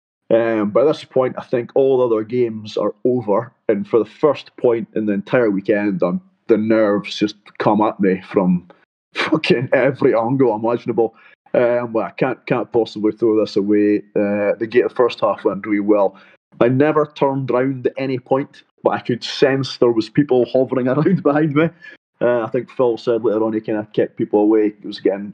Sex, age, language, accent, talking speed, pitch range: male, 20-39, English, British, 205 wpm, 110-135 Hz